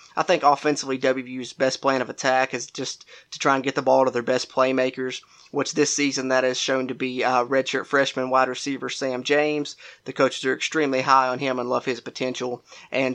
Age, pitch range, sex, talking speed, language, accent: 20-39, 130-145 Hz, male, 215 wpm, English, American